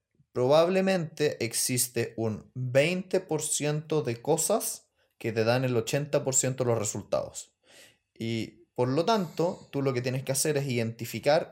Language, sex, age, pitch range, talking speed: Spanish, male, 30-49, 125-170 Hz, 135 wpm